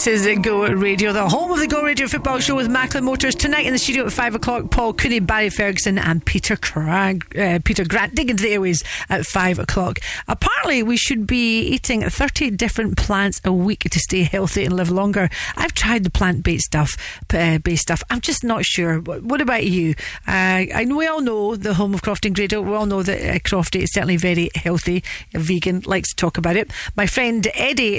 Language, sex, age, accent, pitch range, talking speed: English, female, 40-59, British, 185-250 Hz, 220 wpm